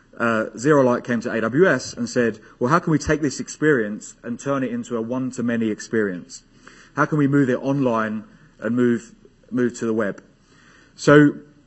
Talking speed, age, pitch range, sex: 180 wpm, 30-49, 110-140 Hz, male